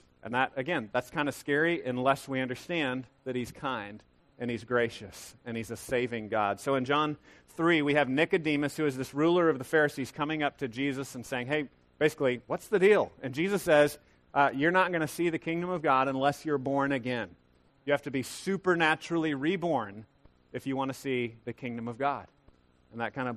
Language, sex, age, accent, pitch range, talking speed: English, male, 30-49, American, 125-150 Hz, 210 wpm